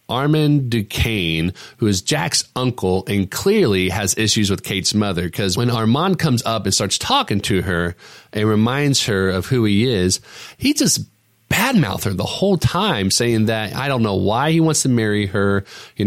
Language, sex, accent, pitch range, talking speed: English, male, American, 95-125 Hz, 185 wpm